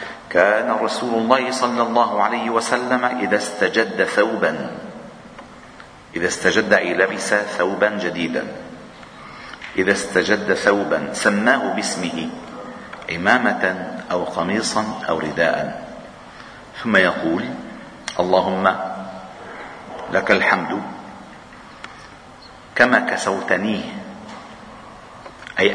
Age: 50-69